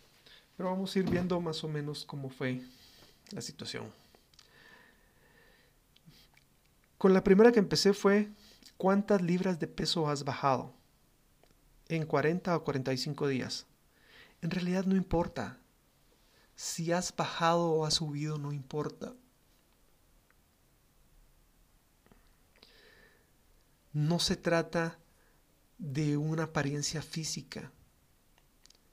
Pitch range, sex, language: 140-170 Hz, male, Spanish